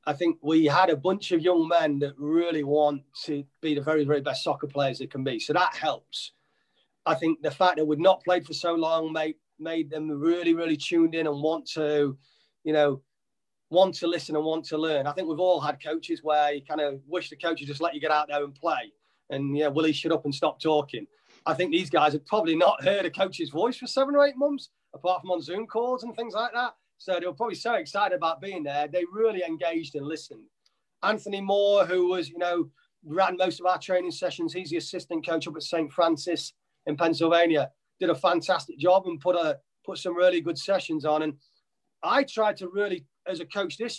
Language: English